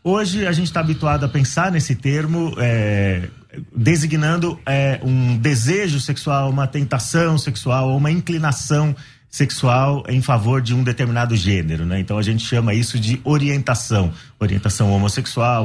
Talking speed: 145 wpm